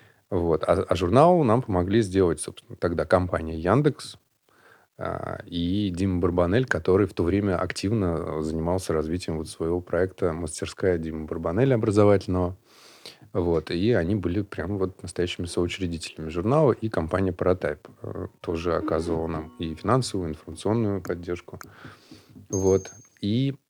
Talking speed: 130 wpm